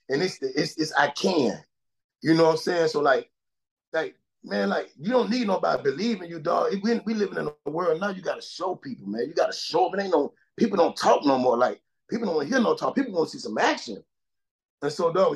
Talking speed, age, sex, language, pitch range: 265 wpm, 30-49, male, English, 165-270 Hz